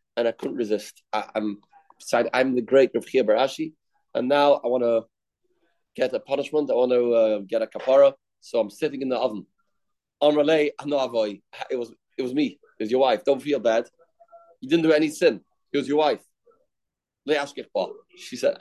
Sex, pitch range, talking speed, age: male, 135-200 Hz, 185 wpm, 30-49